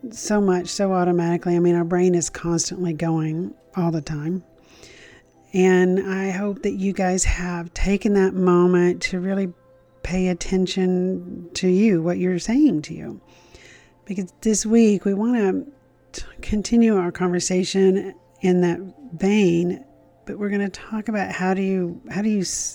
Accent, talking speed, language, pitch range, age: American, 155 wpm, English, 170-195 Hz, 40-59